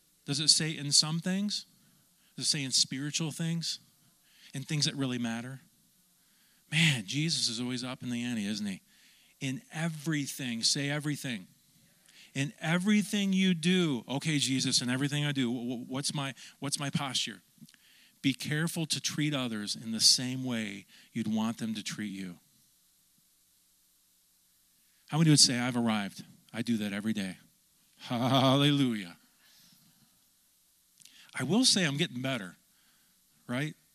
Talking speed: 140 wpm